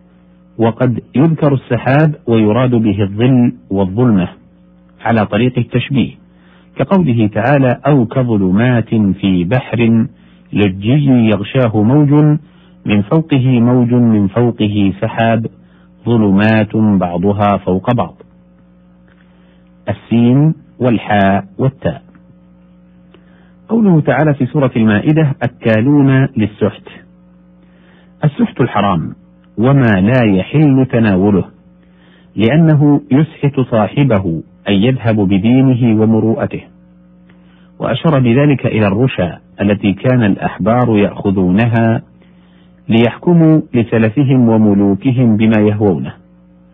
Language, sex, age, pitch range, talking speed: Arabic, male, 50-69, 95-130 Hz, 85 wpm